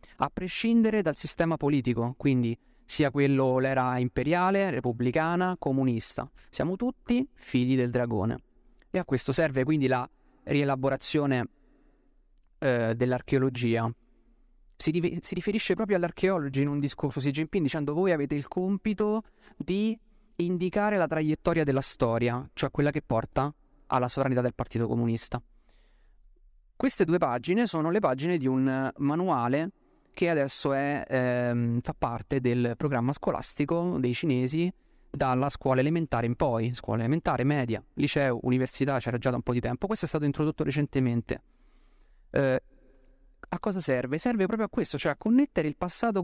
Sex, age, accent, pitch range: male, 30-49, native, 125-180 Hz